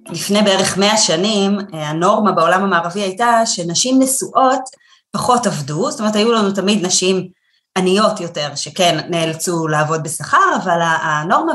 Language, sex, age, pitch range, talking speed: Hebrew, female, 30-49, 175-230 Hz, 135 wpm